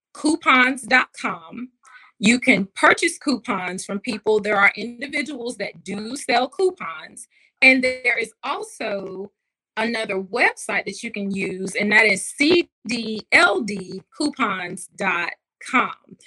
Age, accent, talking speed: 20-39, American, 105 wpm